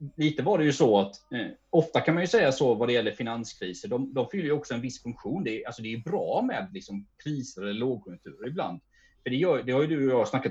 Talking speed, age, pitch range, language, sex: 250 wpm, 30-49, 110-155 Hz, Swedish, male